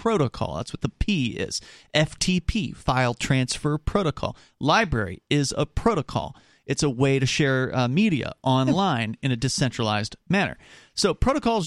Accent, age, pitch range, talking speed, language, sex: American, 40-59, 165-255 Hz, 145 wpm, English, male